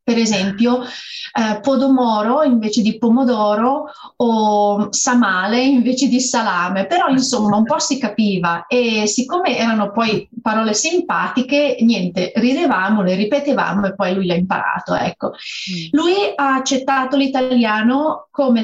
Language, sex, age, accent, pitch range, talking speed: Italian, female, 30-49, native, 210-260 Hz, 125 wpm